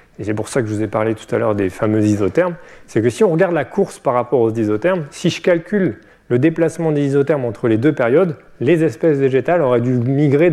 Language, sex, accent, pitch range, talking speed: French, male, French, 110-150 Hz, 245 wpm